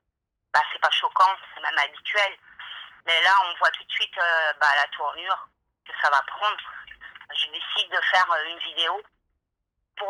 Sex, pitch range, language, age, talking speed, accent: female, 160-195 Hz, French, 40-59, 180 wpm, French